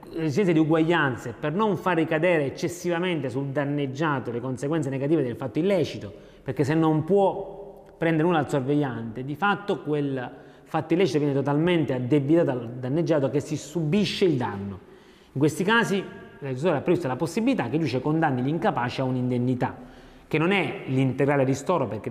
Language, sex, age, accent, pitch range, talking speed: Italian, male, 30-49, native, 130-170 Hz, 165 wpm